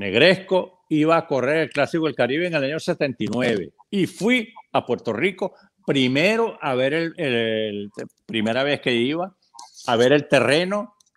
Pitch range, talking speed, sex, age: 115-170 Hz, 165 wpm, male, 60-79